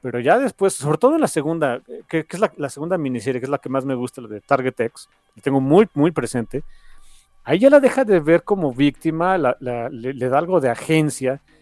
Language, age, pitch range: Spanish, 40-59, 125-185 Hz